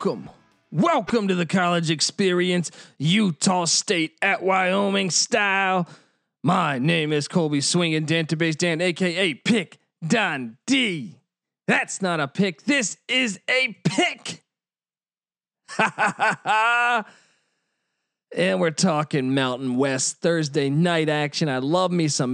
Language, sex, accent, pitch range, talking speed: English, male, American, 130-180 Hz, 125 wpm